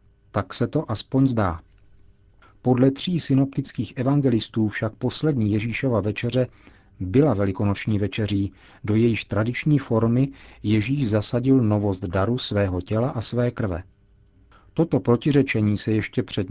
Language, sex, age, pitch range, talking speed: Czech, male, 40-59, 100-135 Hz, 125 wpm